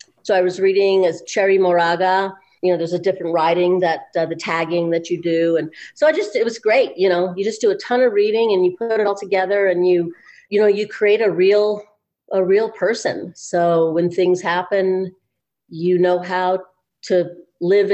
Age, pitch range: 40-59, 175-235 Hz